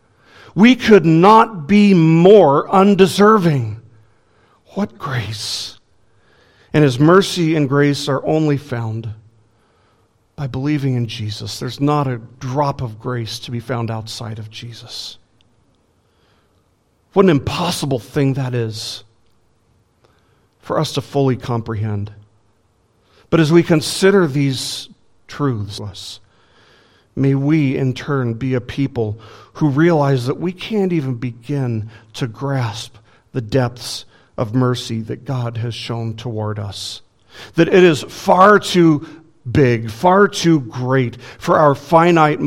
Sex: male